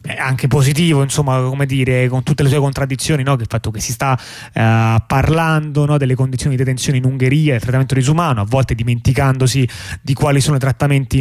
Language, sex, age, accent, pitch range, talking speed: Italian, male, 20-39, native, 115-145 Hz, 200 wpm